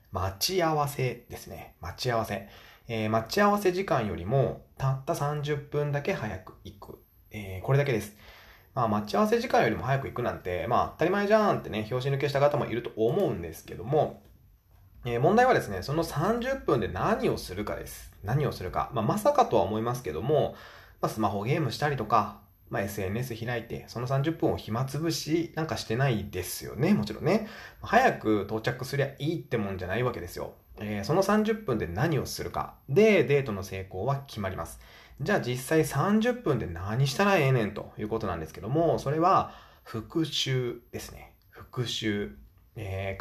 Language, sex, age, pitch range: Japanese, male, 20-39, 100-145 Hz